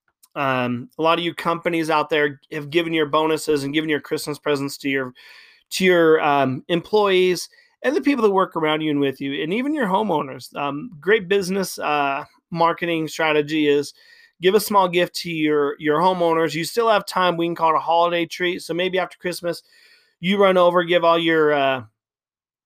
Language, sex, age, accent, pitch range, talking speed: English, male, 30-49, American, 145-185 Hz, 195 wpm